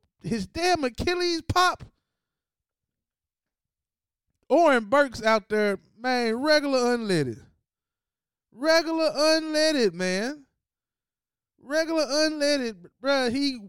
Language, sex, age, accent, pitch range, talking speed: English, male, 20-39, American, 210-350 Hz, 80 wpm